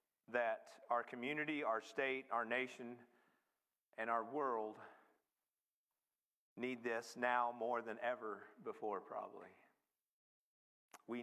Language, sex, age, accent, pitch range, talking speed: English, male, 50-69, American, 120-160 Hz, 100 wpm